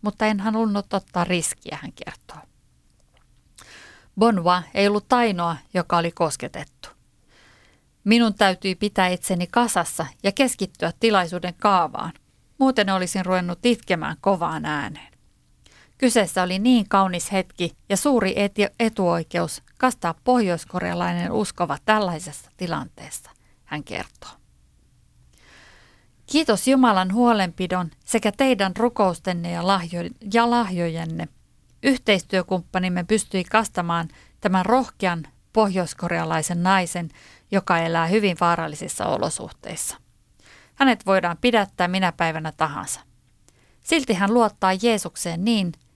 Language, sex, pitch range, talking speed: Finnish, female, 170-220 Hz, 100 wpm